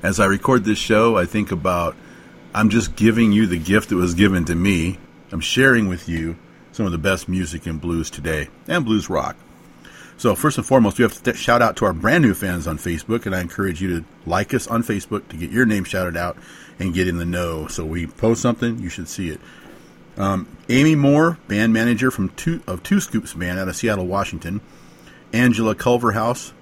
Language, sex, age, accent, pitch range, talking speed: English, male, 40-59, American, 90-120 Hz, 215 wpm